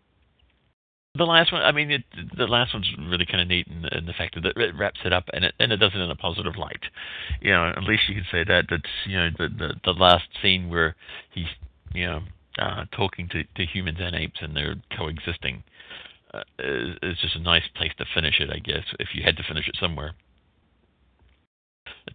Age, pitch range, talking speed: 50-69, 80-95 Hz, 220 wpm